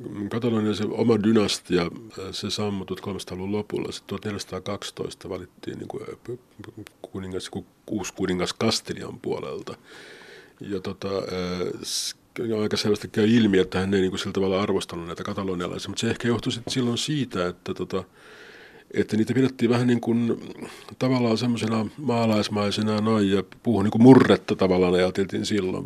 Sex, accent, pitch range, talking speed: male, native, 100-115 Hz, 135 wpm